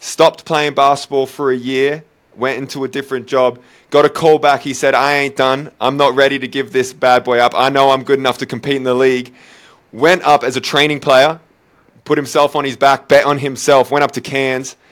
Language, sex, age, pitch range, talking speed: English, male, 20-39, 115-140 Hz, 230 wpm